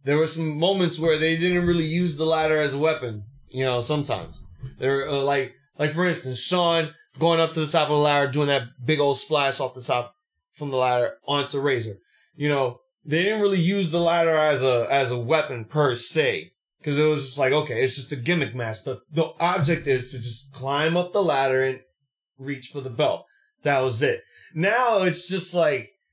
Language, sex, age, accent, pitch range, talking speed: English, male, 20-39, American, 130-165 Hz, 215 wpm